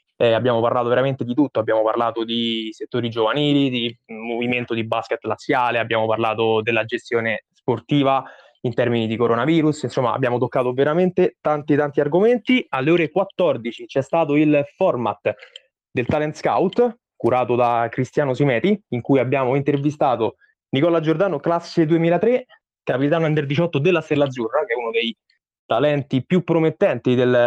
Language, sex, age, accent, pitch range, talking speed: Italian, male, 20-39, native, 120-165 Hz, 145 wpm